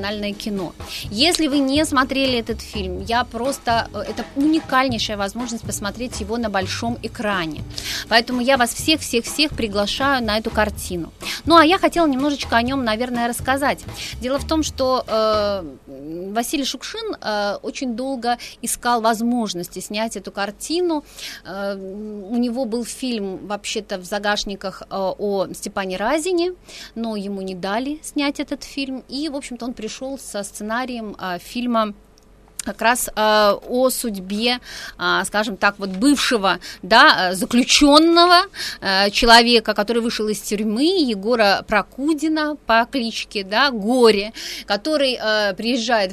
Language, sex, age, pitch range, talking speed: Russian, female, 30-49, 205-265 Hz, 135 wpm